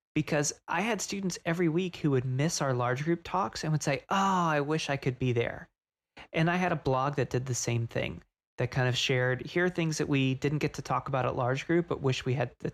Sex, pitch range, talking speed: male, 130-160 Hz, 260 wpm